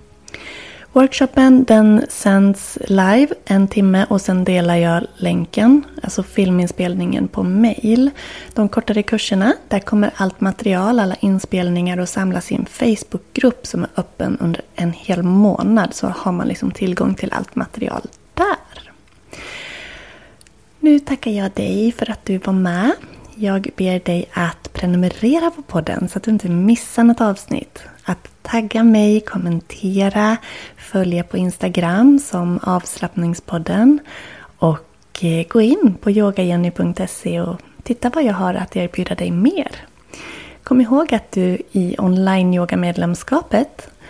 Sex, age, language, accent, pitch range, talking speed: female, 20-39, Swedish, native, 180-235 Hz, 130 wpm